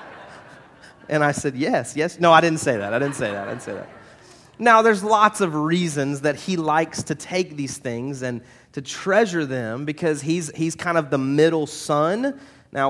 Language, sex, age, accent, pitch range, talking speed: English, male, 30-49, American, 145-175 Hz, 200 wpm